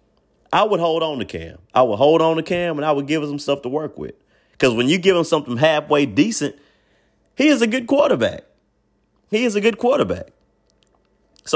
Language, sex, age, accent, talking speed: English, male, 30-49, American, 210 wpm